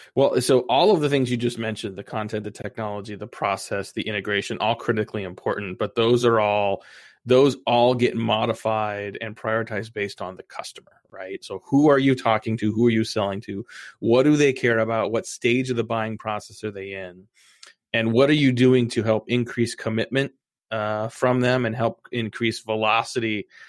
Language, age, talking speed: English, 30-49, 195 wpm